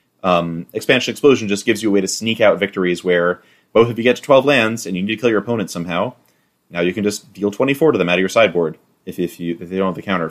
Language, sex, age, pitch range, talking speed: English, male, 30-49, 90-110 Hz, 290 wpm